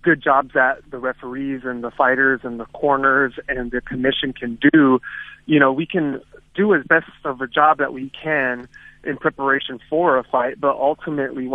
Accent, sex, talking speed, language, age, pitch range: American, male, 185 wpm, English, 30-49, 130-150 Hz